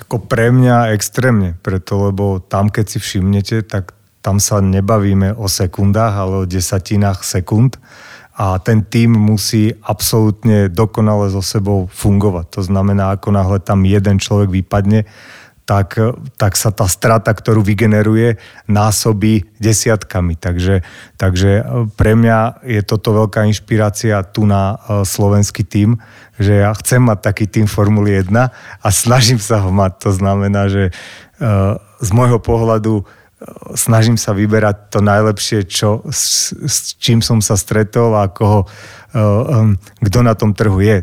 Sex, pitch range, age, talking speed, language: male, 100-110 Hz, 30-49, 140 wpm, Slovak